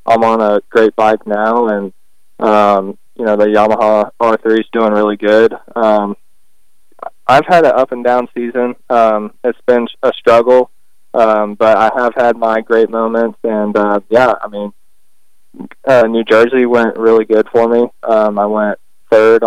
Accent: American